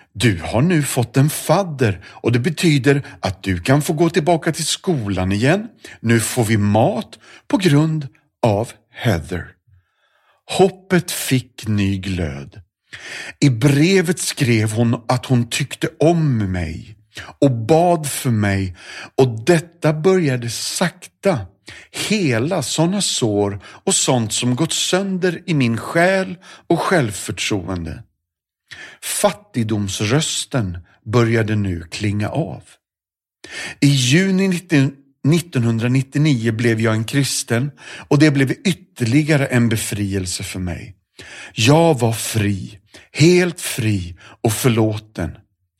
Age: 50-69